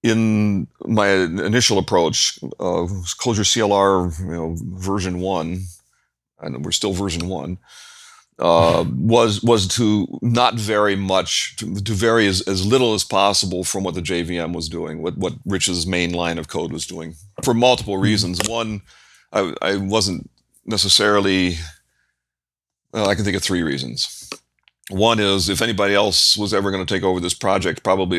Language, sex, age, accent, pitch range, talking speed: English, male, 40-59, American, 90-105 Hz, 160 wpm